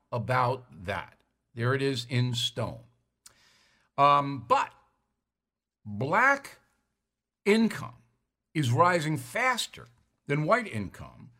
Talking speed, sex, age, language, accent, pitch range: 90 wpm, male, 60-79, English, American, 120-155 Hz